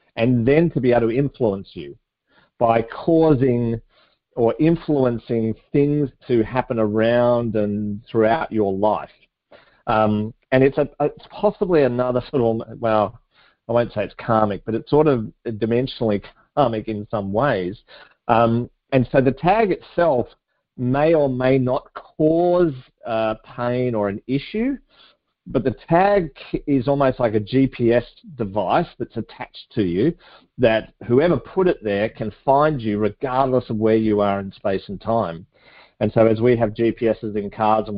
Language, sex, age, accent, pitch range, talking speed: English, male, 40-59, Australian, 110-135 Hz, 155 wpm